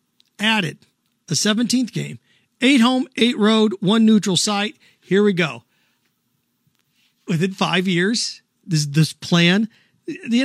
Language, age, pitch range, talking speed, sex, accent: English, 50-69, 170-225 Hz, 120 wpm, male, American